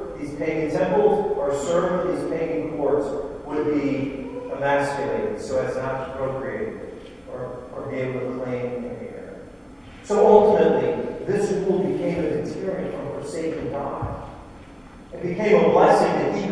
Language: English